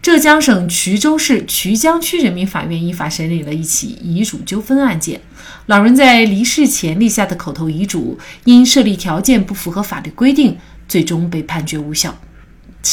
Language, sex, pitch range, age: Chinese, female, 170-245 Hz, 30-49